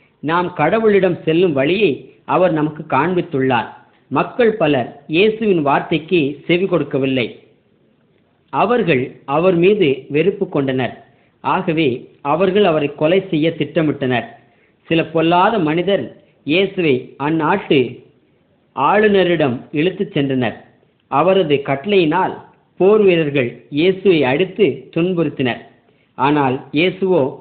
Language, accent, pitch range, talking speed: Tamil, native, 140-185 Hz, 85 wpm